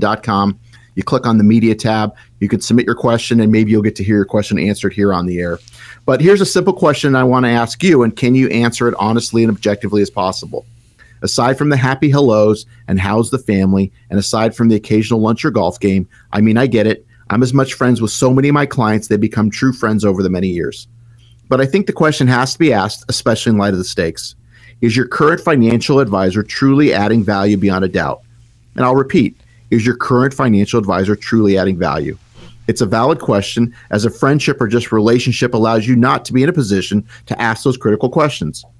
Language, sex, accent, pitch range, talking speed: English, male, American, 105-130 Hz, 225 wpm